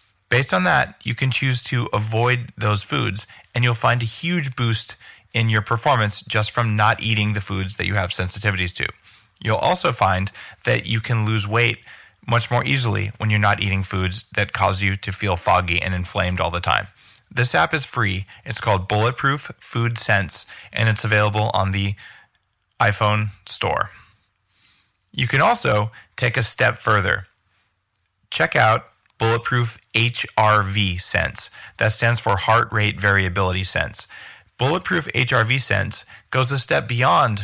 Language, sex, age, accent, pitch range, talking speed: English, male, 30-49, American, 100-120 Hz, 160 wpm